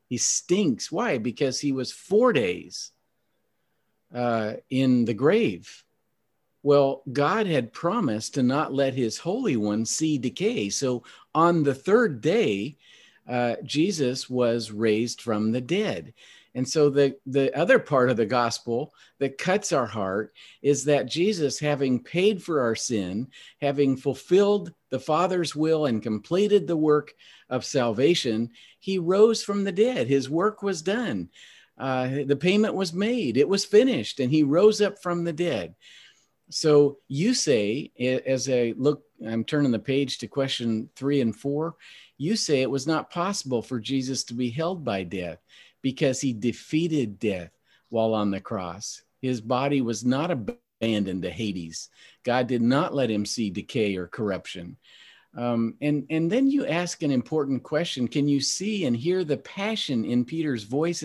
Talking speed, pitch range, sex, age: 160 wpm, 120-170 Hz, male, 50-69